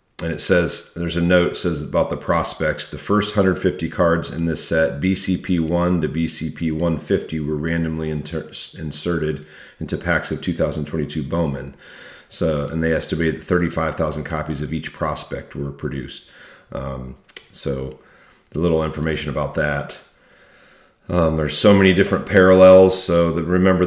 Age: 40-59